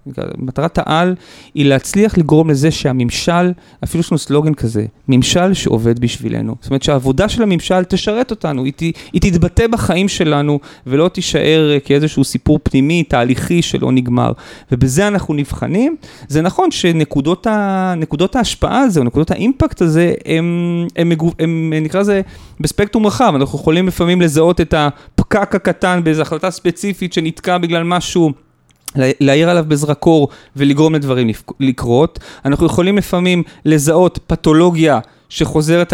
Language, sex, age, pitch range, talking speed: Hebrew, male, 30-49, 145-185 Hz, 130 wpm